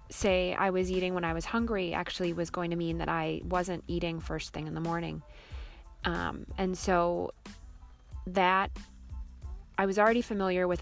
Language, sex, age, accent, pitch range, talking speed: English, female, 20-39, American, 160-180 Hz, 170 wpm